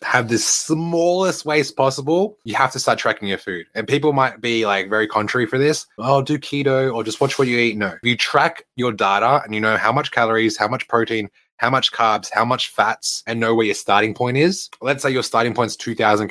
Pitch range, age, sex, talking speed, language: 105-130 Hz, 20-39, male, 240 wpm, English